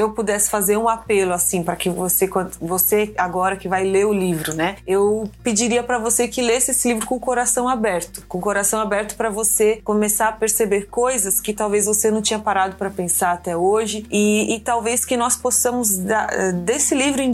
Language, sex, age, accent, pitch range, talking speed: Portuguese, female, 20-39, Brazilian, 195-235 Hz, 205 wpm